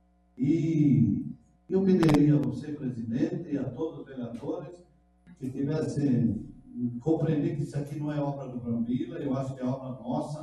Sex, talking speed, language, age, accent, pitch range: male, 160 wpm, Portuguese, 60-79, Brazilian, 120-170 Hz